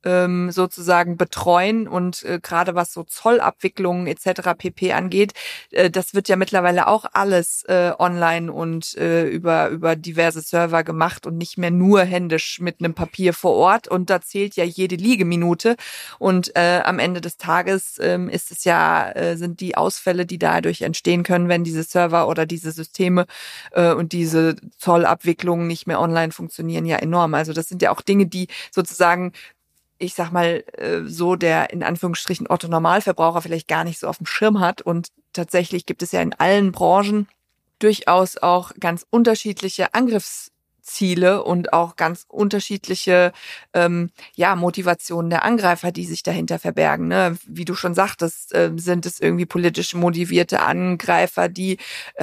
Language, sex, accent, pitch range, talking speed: German, female, German, 170-185 Hz, 165 wpm